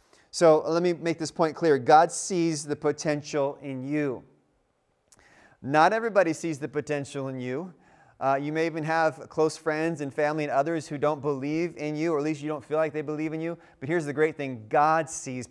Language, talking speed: English, 210 wpm